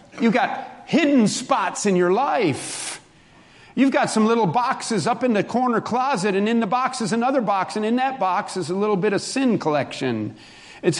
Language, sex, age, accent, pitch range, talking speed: English, male, 50-69, American, 165-225 Hz, 195 wpm